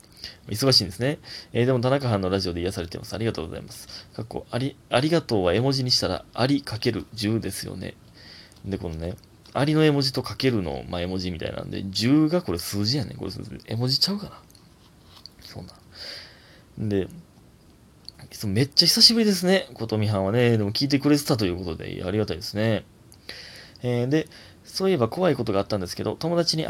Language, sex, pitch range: Japanese, male, 95-140 Hz